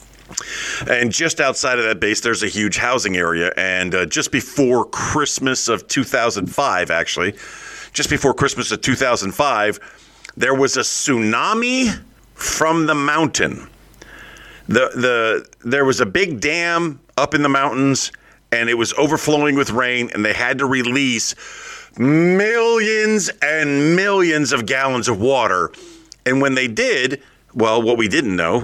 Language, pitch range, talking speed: English, 115-160 Hz, 145 wpm